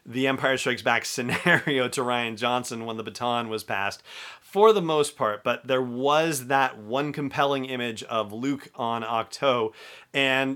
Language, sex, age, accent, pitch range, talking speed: English, male, 40-59, American, 115-140 Hz, 165 wpm